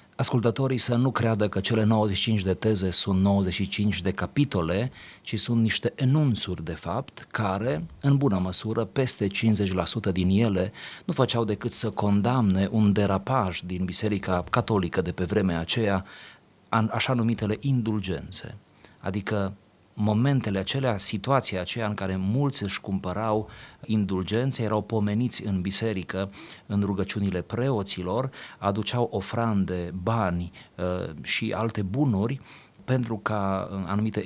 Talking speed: 125 wpm